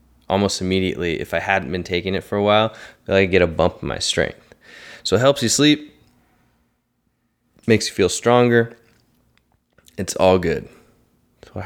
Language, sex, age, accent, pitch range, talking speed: English, male, 20-39, American, 95-115 Hz, 175 wpm